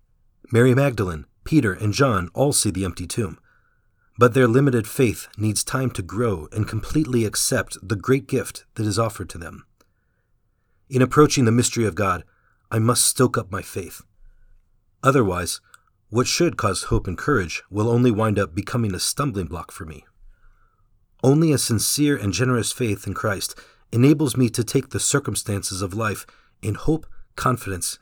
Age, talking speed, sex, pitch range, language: 40-59, 165 wpm, male, 100-125 Hz, English